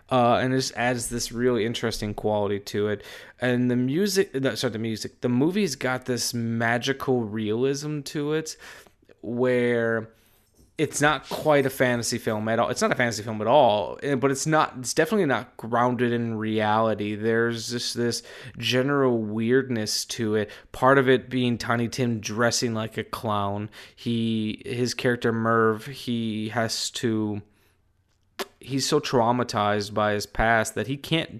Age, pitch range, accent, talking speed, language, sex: 20-39, 110-125 Hz, American, 160 wpm, English, male